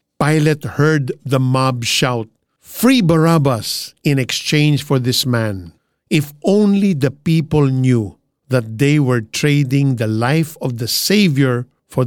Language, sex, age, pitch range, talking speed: Filipino, male, 50-69, 130-160 Hz, 135 wpm